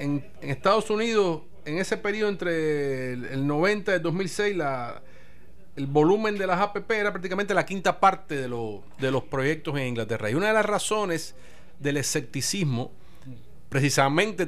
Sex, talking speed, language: male, 165 wpm, English